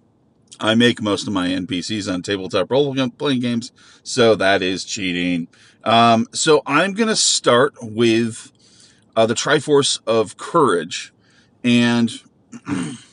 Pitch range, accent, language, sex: 105-130 Hz, American, English, male